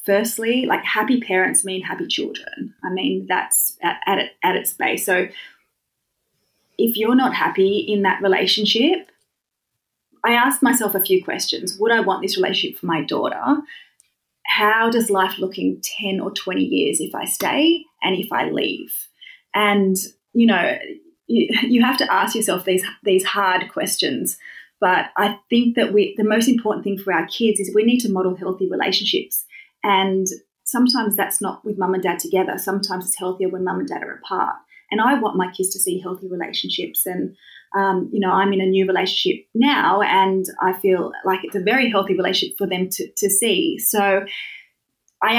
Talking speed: 180 wpm